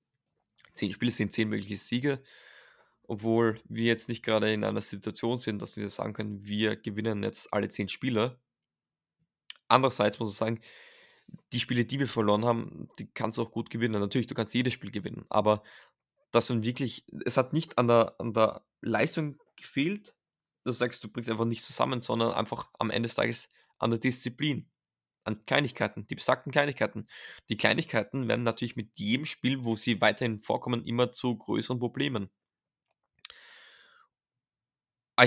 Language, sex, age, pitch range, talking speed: German, male, 20-39, 110-125 Hz, 165 wpm